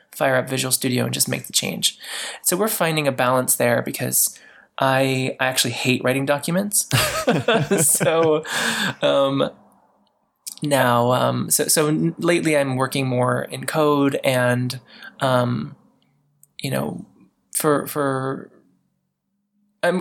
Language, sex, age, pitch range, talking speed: English, male, 20-39, 125-150 Hz, 125 wpm